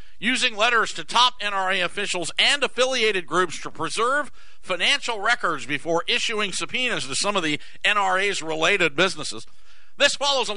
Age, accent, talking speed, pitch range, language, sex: 50-69, American, 150 wpm, 150-200 Hz, English, male